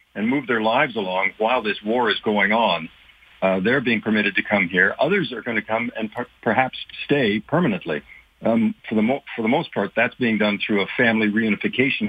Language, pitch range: English, 100-125 Hz